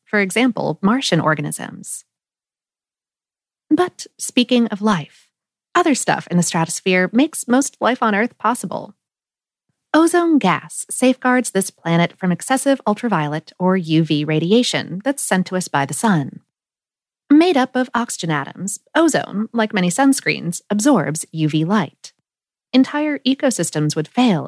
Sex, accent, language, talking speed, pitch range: female, American, English, 130 wpm, 170-260 Hz